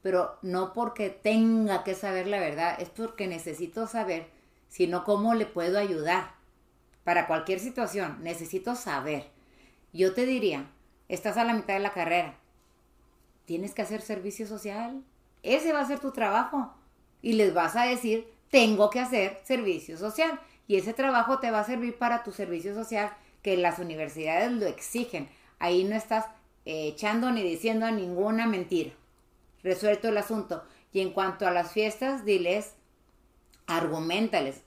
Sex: female